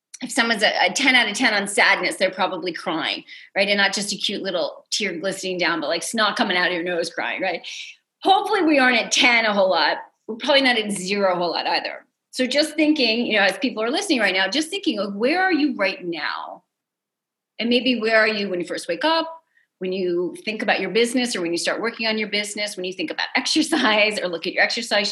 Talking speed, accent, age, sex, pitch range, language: 245 wpm, American, 40-59, female, 195-275 Hz, English